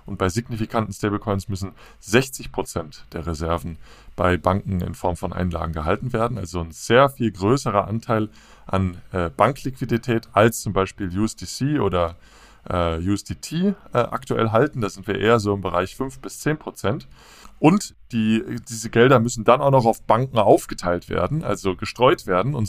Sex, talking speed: male, 155 wpm